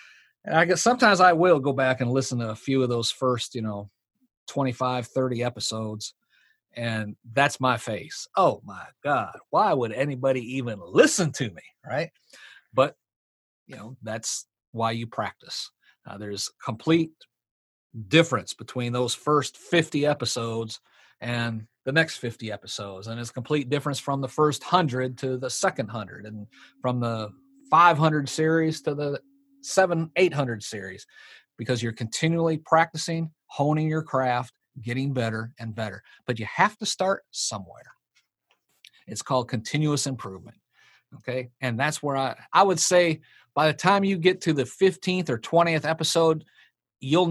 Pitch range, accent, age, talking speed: 115-160 Hz, American, 40-59, 150 wpm